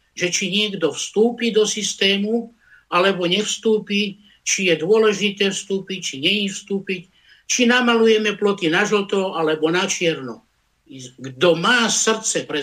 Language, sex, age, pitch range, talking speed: Slovak, male, 60-79, 175-225 Hz, 130 wpm